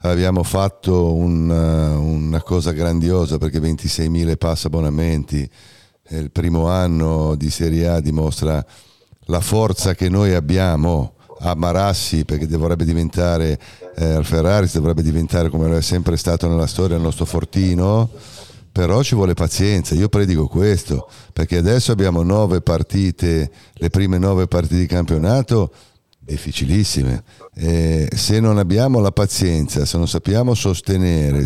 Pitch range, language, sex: 80-100 Hz, Italian, male